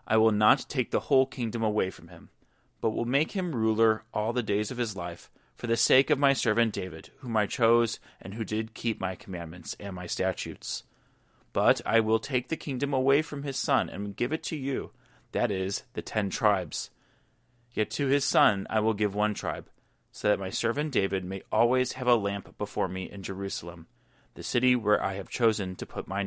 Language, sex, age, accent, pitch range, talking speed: English, male, 30-49, American, 105-130 Hz, 210 wpm